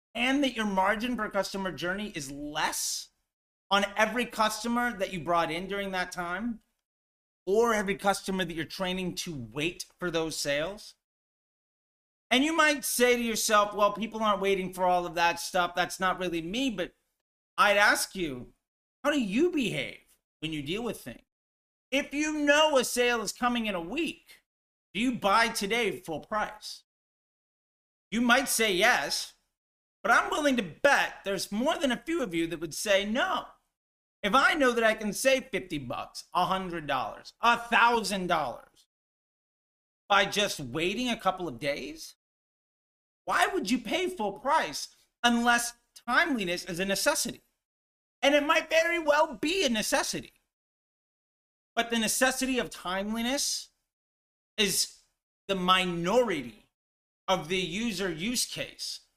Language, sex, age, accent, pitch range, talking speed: English, male, 40-59, American, 185-250 Hz, 155 wpm